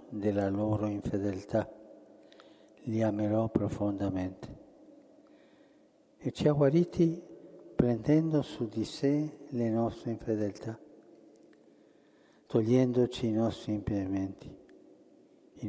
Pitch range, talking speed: 105-140 Hz, 85 wpm